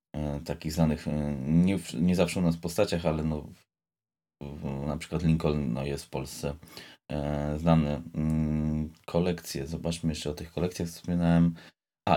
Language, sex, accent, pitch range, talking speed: Polish, male, native, 75-85 Hz, 170 wpm